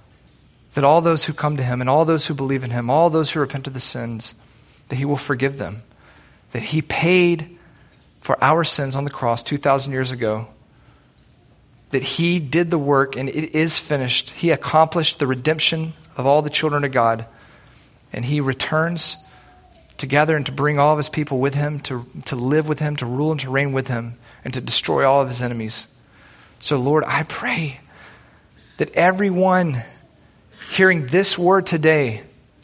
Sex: male